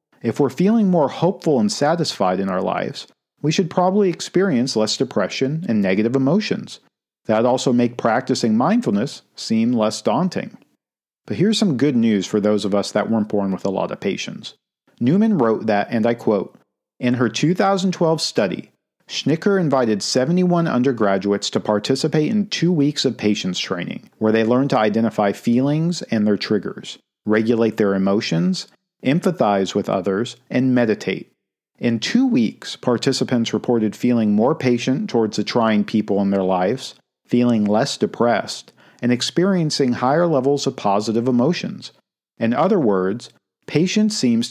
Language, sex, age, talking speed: English, male, 50-69, 150 wpm